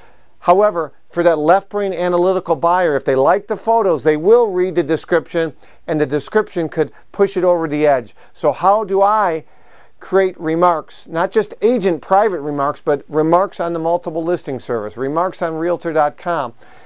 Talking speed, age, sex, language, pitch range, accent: 165 wpm, 50-69, male, English, 150-185 Hz, American